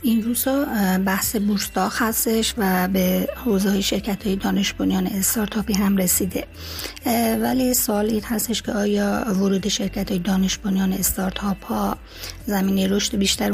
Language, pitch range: Persian, 190-215 Hz